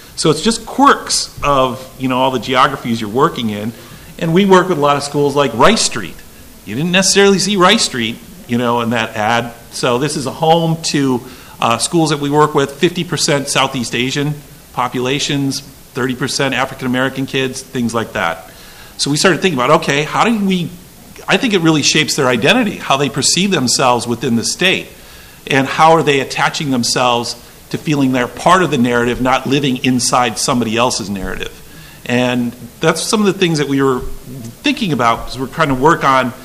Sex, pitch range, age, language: male, 125-165 Hz, 50-69, English